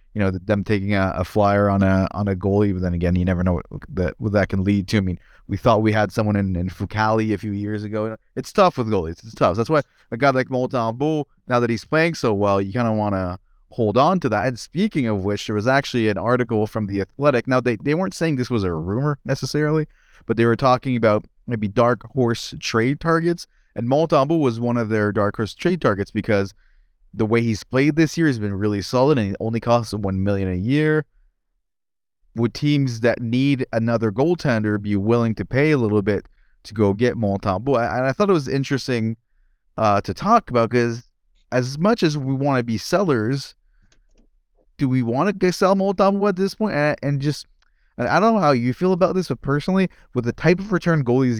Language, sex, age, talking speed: English, male, 20-39, 230 wpm